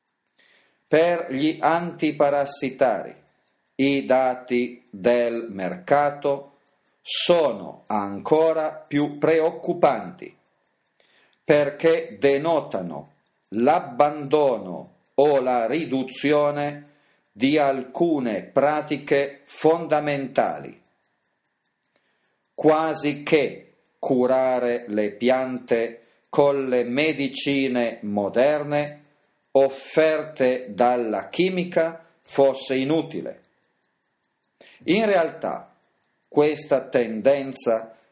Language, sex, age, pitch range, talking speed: Italian, male, 40-59, 125-160 Hz, 60 wpm